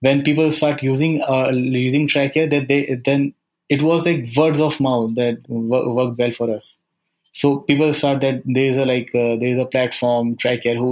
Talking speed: 205 wpm